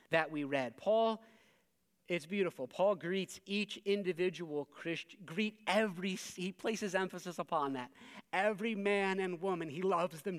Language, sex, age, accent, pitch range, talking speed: English, male, 40-59, American, 170-210 Hz, 145 wpm